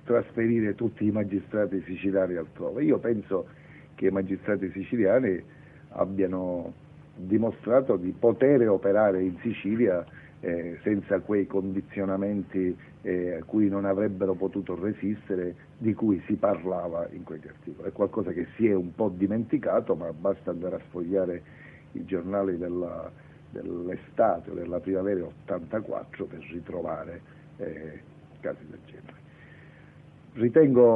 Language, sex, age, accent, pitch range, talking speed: Italian, male, 50-69, native, 90-105 Hz, 125 wpm